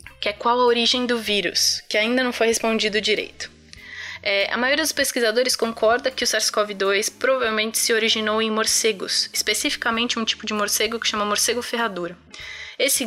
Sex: female